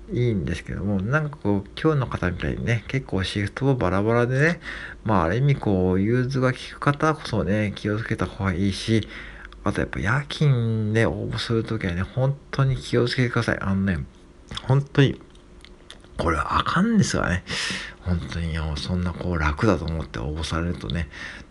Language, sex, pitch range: Japanese, male, 85-115 Hz